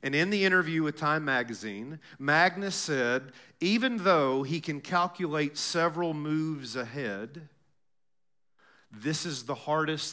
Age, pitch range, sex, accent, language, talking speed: 40-59, 155-215 Hz, male, American, English, 125 wpm